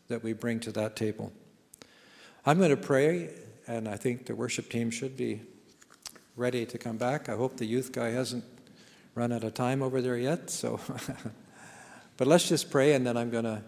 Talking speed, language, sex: 195 wpm, English, male